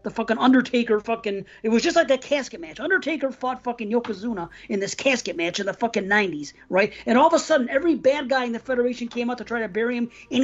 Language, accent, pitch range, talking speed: English, American, 210-260 Hz, 245 wpm